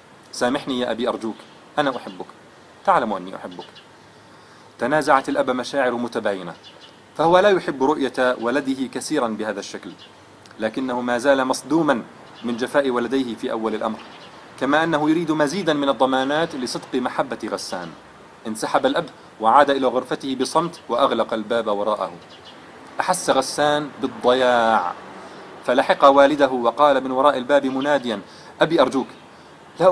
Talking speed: 125 wpm